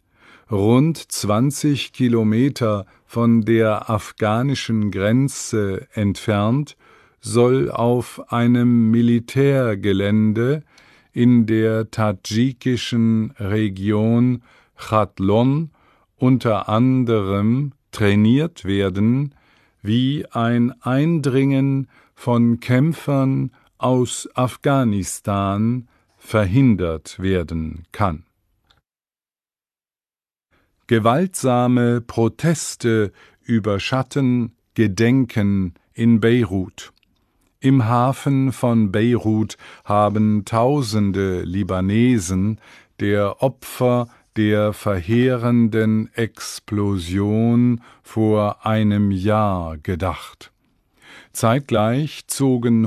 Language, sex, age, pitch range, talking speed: English, male, 50-69, 100-125 Hz, 60 wpm